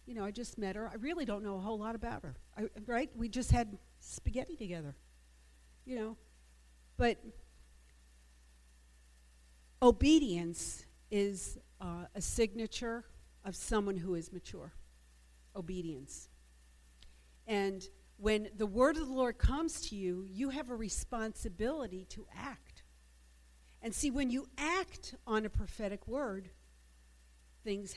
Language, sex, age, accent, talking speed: English, female, 50-69, American, 130 wpm